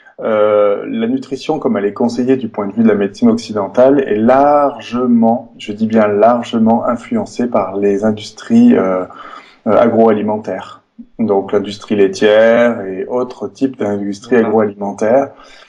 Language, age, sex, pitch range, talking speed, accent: French, 20-39, male, 105-135 Hz, 130 wpm, French